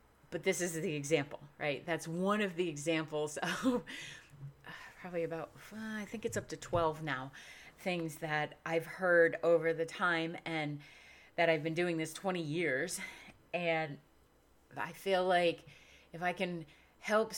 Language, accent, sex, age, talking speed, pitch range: English, American, female, 30-49, 150 wpm, 155-185 Hz